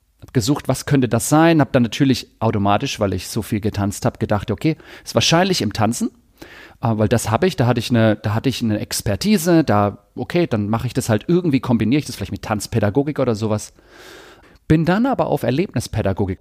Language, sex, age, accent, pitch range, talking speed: German, male, 40-59, German, 105-135 Hz, 195 wpm